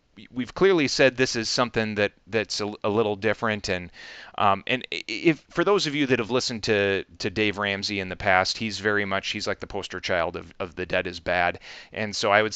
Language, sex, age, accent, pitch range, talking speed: English, male, 30-49, American, 95-115 Hz, 230 wpm